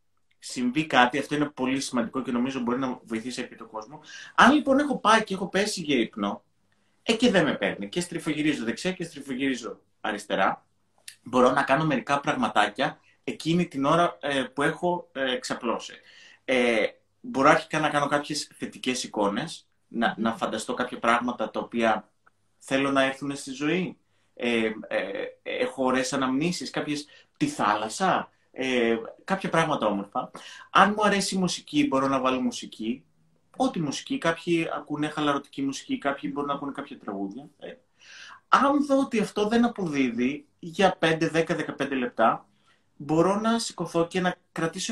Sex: male